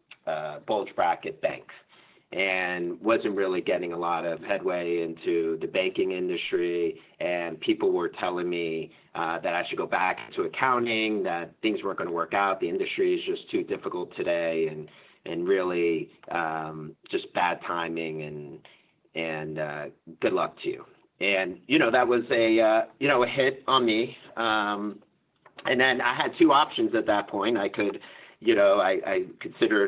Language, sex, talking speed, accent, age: English, male, 175 wpm, American, 40-59